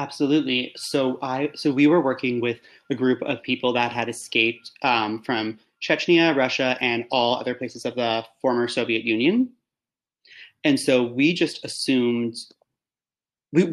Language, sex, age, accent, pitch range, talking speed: English, male, 30-49, American, 110-130 Hz, 150 wpm